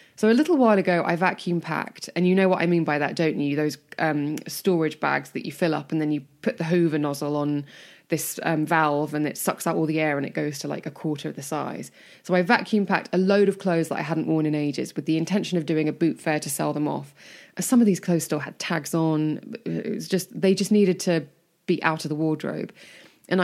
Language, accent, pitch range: English, British, 155-185 Hz